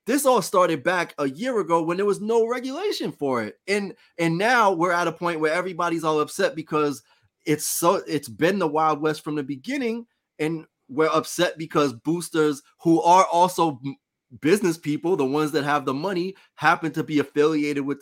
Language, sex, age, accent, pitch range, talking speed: English, male, 20-39, American, 140-170 Hz, 190 wpm